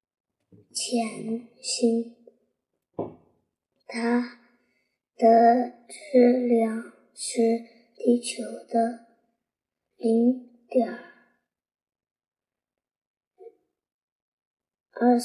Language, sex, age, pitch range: Chinese, male, 30-49, 235-270 Hz